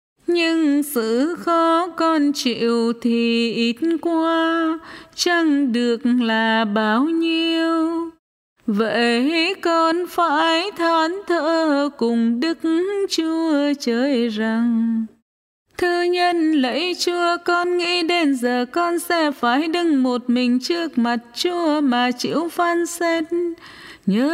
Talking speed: 110 wpm